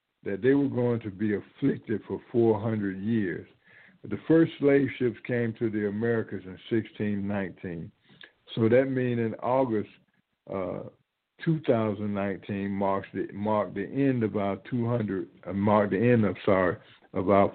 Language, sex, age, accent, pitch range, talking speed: English, male, 60-79, American, 100-130 Hz, 165 wpm